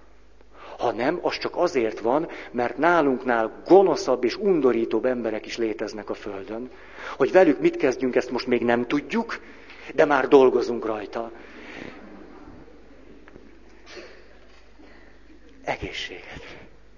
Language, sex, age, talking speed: Hungarian, male, 50-69, 105 wpm